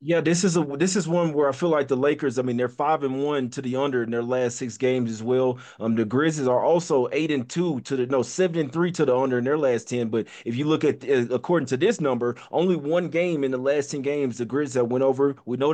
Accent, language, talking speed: American, English, 280 wpm